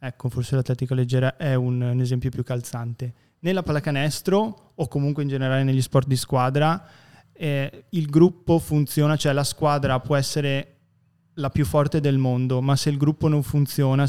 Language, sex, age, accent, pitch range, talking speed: Italian, male, 20-39, native, 125-140 Hz, 170 wpm